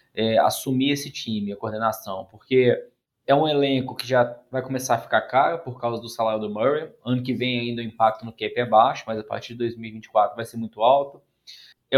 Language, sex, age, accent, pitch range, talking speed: Portuguese, male, 20-39, Brazilian, 115-140 Hz, 215 wpm